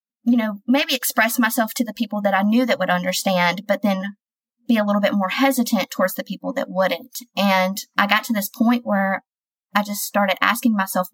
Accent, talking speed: American, 210 wpm